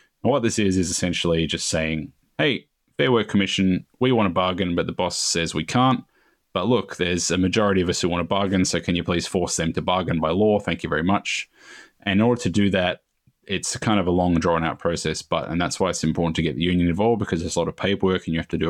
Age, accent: 20-39, Australian